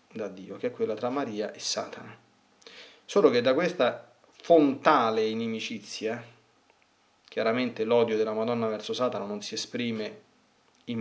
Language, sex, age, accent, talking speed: Italian, male, 30-49, native, 135 wpm